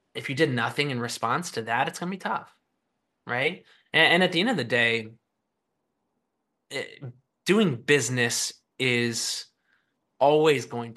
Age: 20-39